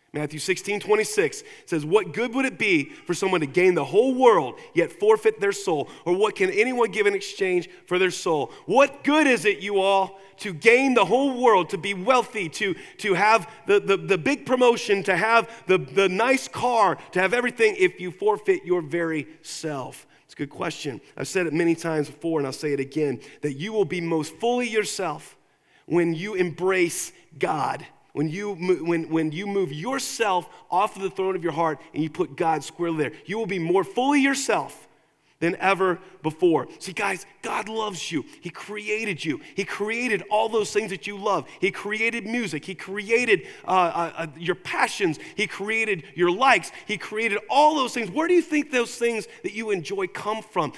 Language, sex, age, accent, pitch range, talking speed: English, male, 30-49, American, 180-240 Hz, 195 wpm